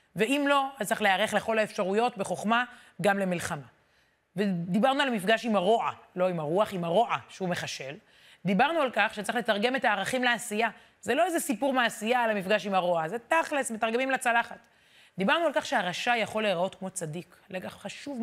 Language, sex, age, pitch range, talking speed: Hebrew, female, 30-49, 180-235 Hz, 175 wpm